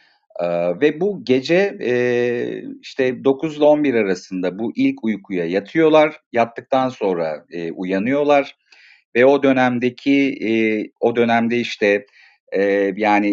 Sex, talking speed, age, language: male, 120 wpm, 40-59, Turkish